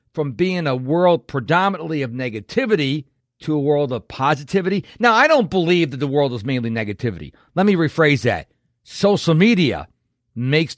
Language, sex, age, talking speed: English, male, 50-69, 160 wpm